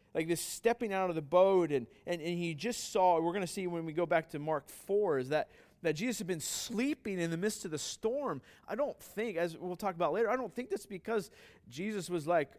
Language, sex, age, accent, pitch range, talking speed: English, male, 30-49, American, 175-230 Hz, 255 wpm